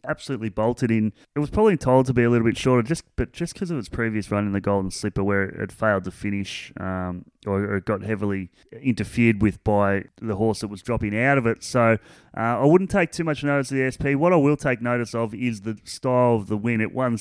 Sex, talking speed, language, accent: male, 250 wpm, English, Australian